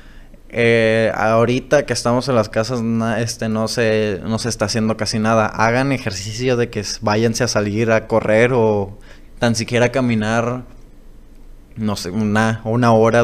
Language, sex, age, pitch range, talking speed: Spanish, male, 20-39, 110-125 Hz, 170 wpm